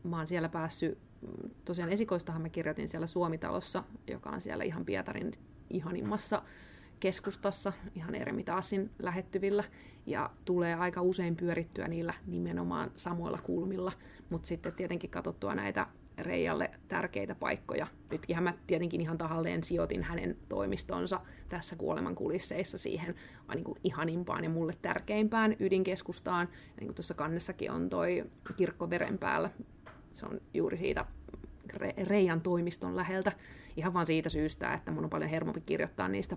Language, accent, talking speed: Finnish, native, 130 wpm